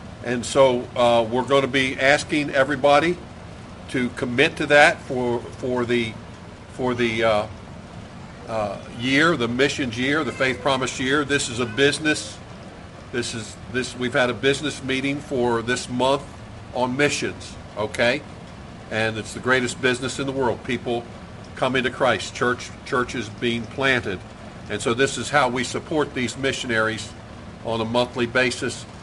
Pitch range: 110-135 Hz